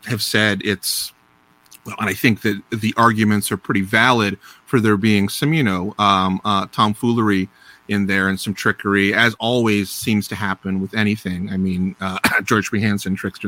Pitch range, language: 95-110 Hz, English